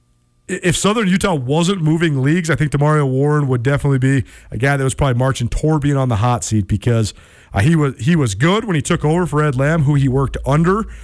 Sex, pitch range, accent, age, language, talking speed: male, 125-150 Hz, American, 40-59, English, 235 wpm